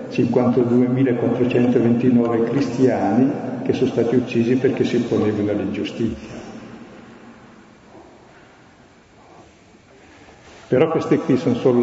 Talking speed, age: 75 wpm, 50-69